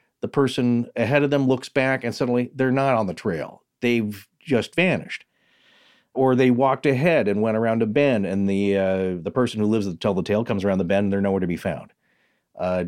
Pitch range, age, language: 105-135 Hz, 40-59, English